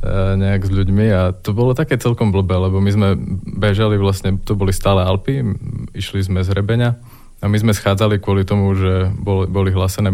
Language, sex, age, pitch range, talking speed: Slovak, male, 20-39, 95-105 Hz, 190 wpm